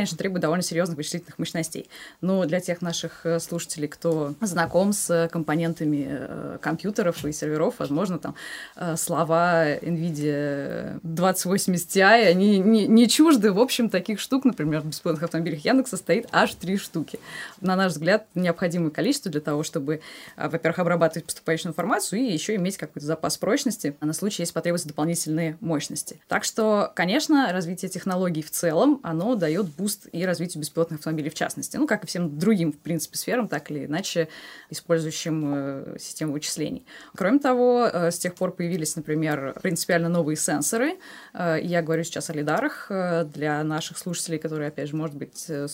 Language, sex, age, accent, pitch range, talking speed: Russian, female, 20-39, native, 155-185 Hz, 160 wpm